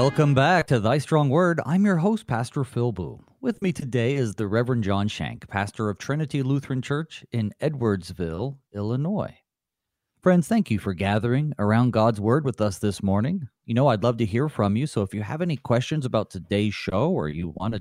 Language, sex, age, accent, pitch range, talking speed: English, male, 40-59, American, 100-145 Hz, 205 wpm